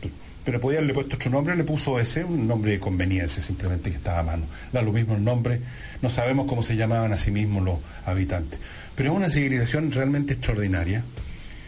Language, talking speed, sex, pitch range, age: Spanish, 200 wpm, male, 95-120 Hz, 70-89